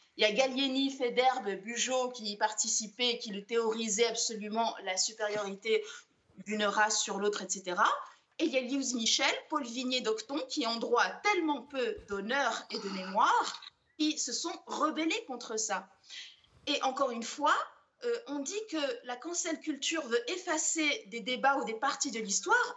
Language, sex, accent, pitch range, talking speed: French, female, French, 230-310 Hz, 165 wpm